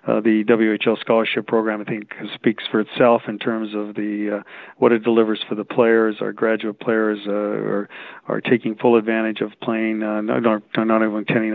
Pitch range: 110-120 Hz